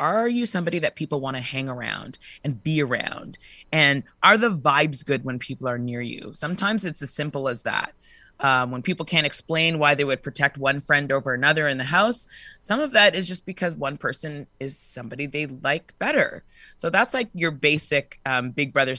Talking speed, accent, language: 205 wpm, American, English